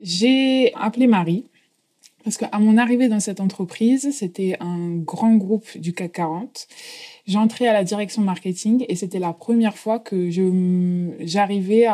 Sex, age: female, 20-39